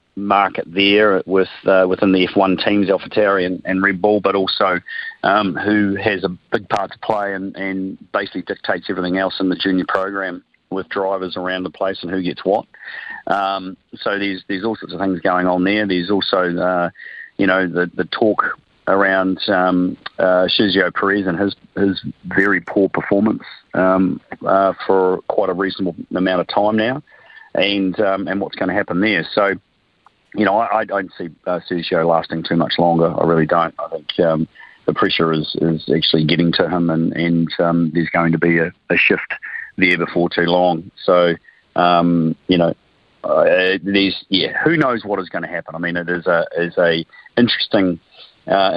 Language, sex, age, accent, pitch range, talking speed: English, male, 40-59, Australian, 85-95 Hz, 190 wpm